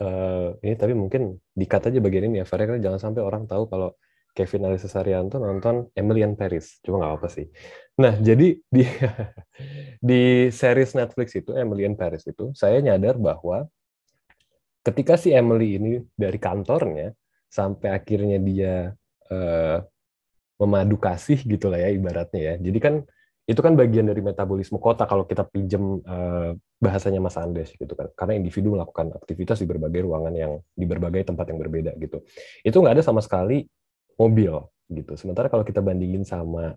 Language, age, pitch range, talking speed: Indonesian, 20-39, 95-125 Hz, 160 wpm